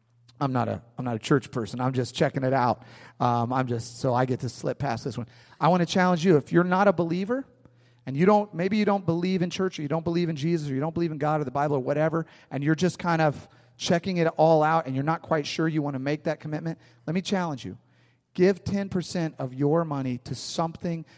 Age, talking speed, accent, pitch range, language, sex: 40-59, 260 wpm, American, 130-170 Hz, English, male